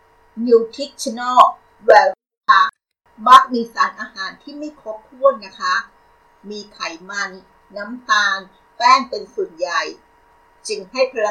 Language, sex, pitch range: Thai, female, 200-300 Hz